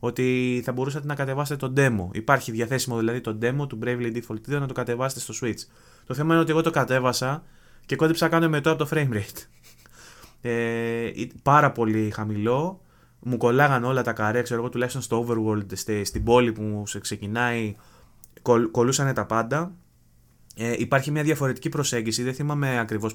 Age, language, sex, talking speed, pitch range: 20-39, Greek, male, 170 wpm, 115-140 Hz